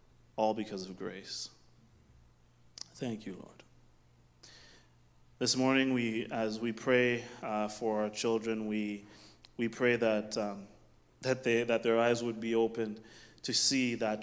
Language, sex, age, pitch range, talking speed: English, male, 20-39, 105-115 Hz, 140 wpm